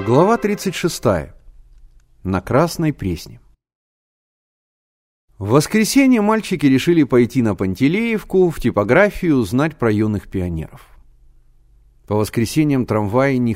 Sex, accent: male, native